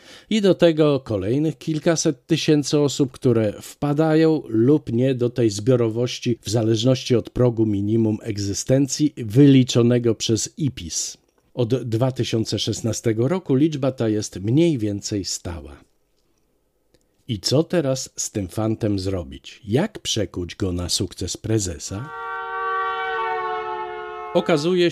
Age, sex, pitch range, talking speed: 50-69, male, 100-140 Hz, 110 wpm